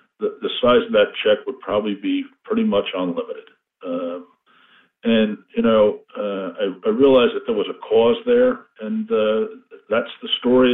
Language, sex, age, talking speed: English, male, 50-69, 170 wpm